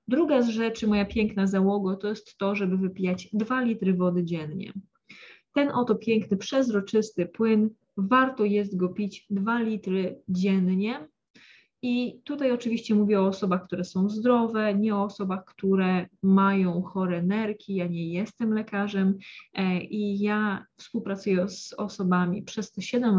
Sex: female